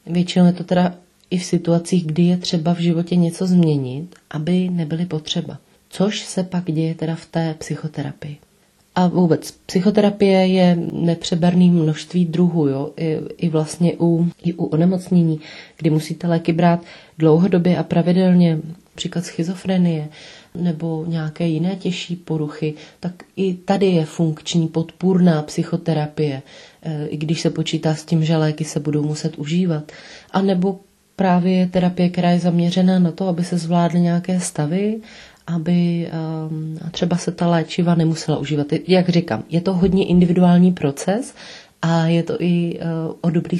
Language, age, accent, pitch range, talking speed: Czech, 30-49, native, 160-180 Hz, 145 wpm